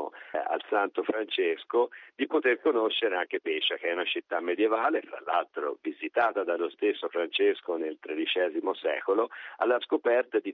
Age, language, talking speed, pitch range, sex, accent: 50-69, Italian, 140 wpm, 335-430 Hz, male, native